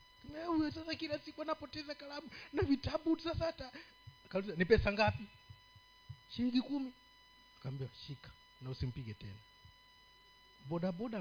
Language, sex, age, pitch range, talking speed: Swahili, male, 50-69, 120-195 Hz, 120 wpm